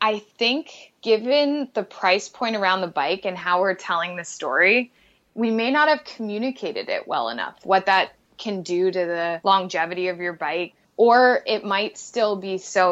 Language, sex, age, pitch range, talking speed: English, female, 20-39, 180-230 Hz, 180 wpm